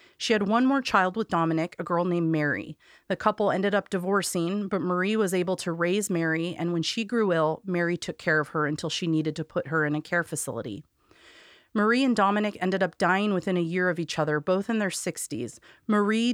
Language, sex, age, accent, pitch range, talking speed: English, female, 30-49, American, 165-210 Hz, 220 wpm